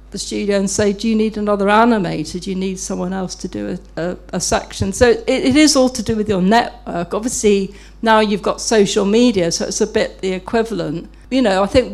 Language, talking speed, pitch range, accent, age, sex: English, 225 wpm, 190-225 Hz, British, 50-69, female